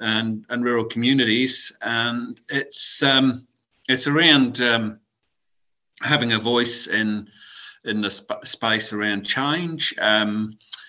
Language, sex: English, male